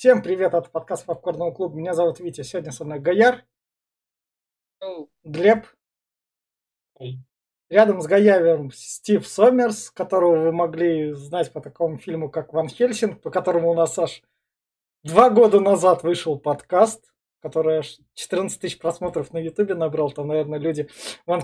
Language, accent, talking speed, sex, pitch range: Russian, native, 145 wpm, male, 155-185 Hz